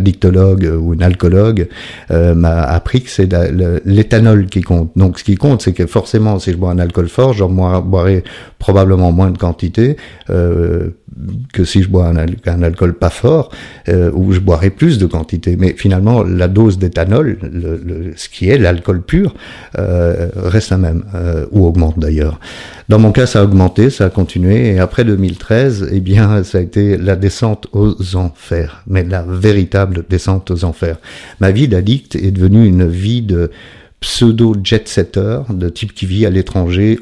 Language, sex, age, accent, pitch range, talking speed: French, male, 50-69, French, 90-105 Hz, 180 wpm